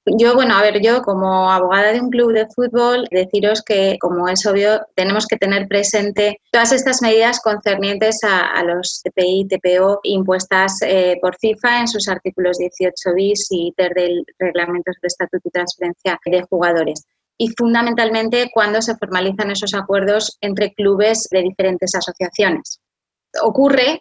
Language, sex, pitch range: English, female, 185-220 Hz